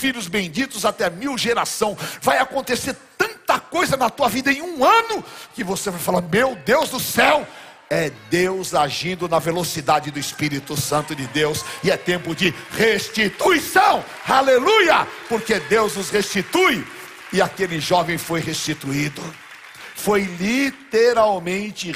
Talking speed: 135 wpm